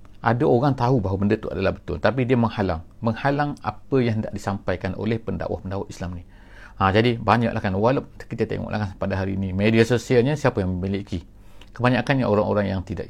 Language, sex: English, male